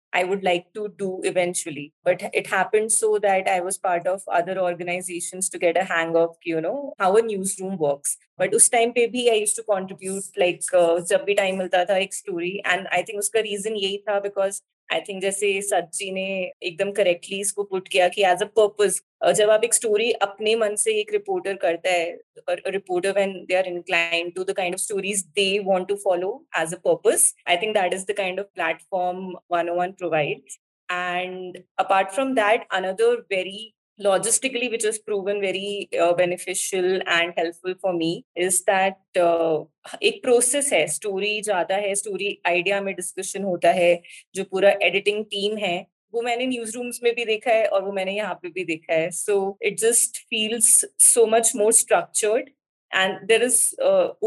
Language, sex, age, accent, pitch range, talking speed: Hindi, female, 20-39, native, 180-220 Hz, 135 wpm